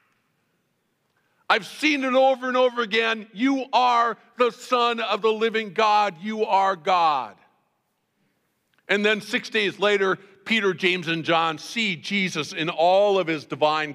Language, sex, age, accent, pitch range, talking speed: English, male, 50-69, American, 135-225 Hz, 145 wpm